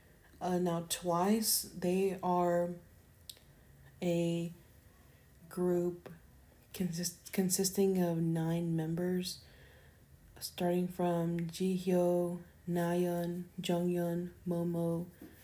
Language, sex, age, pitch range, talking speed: English, female, 30-49, 165-180 Hz, 70 wpm